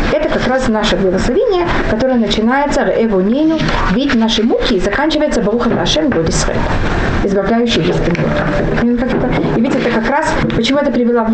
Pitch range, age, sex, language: 220-275 Hz, 30-49, female, Russian